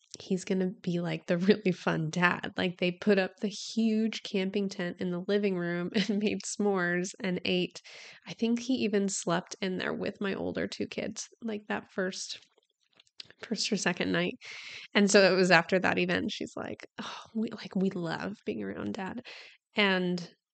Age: 20-39